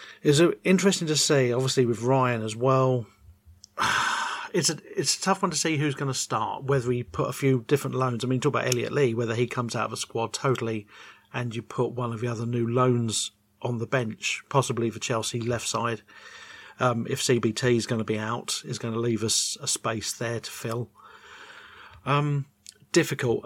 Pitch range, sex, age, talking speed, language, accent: 115-145 Hz, male, 40-59, 205 wpm, English, British